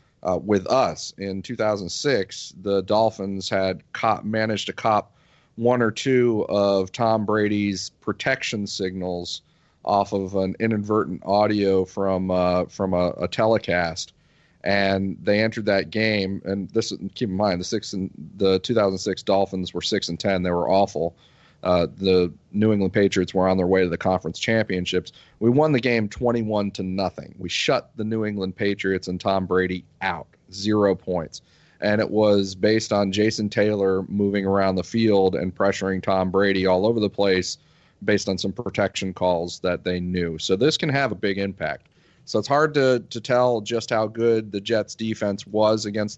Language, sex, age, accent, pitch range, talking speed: English, male, 40-59, American, 95-110 Hz, 175 wpm